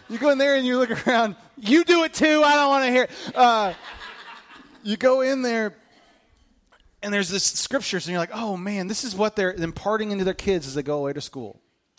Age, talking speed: 30-49, 235 wpm